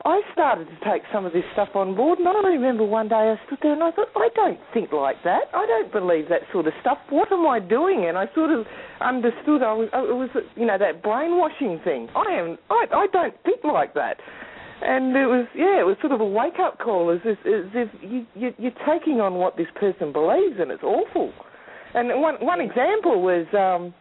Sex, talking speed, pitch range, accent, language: female, 215 wpm, 185-310 Hz, Australian, English